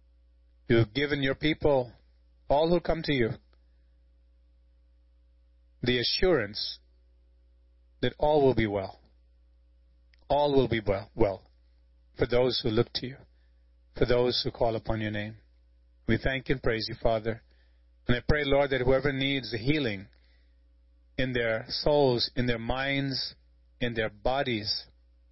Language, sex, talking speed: English, male, 140 wpm